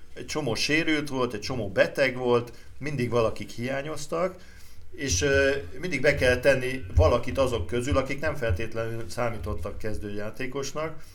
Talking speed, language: 135 wpm, Hungarian